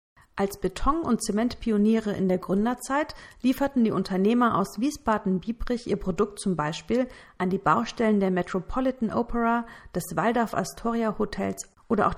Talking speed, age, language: 130 wpm, 50-69, German